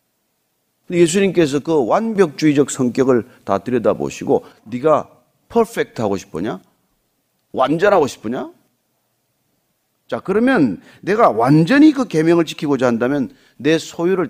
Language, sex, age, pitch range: Korean, male, 40-59, 145-230 Hz